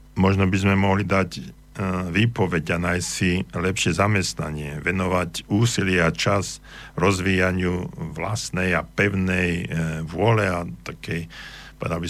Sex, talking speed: male, 110 wpm